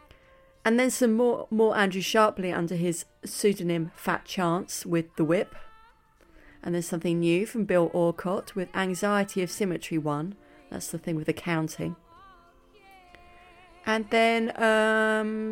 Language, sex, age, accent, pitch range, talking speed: English, female, 30-49, British, 165-200 Hz, 140 wpm